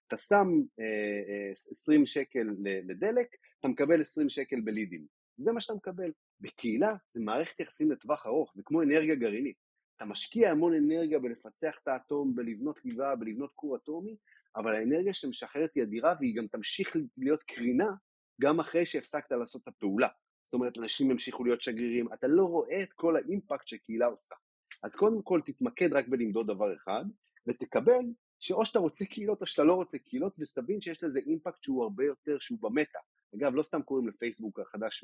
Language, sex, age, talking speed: Hebrew, male, 30-49, 160 wpm